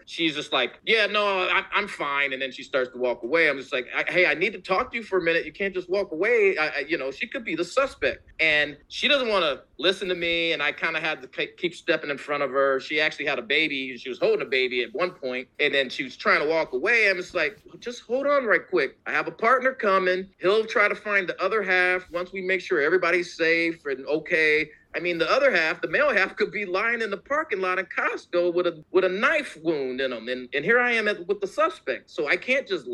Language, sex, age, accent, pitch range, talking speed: English, male, 30-49, American, 155-225 Hz, 270 wpm